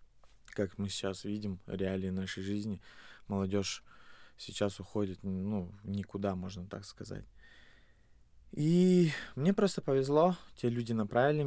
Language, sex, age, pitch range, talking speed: Russian, male, 20-39, 100-125 Hz, 115 wpm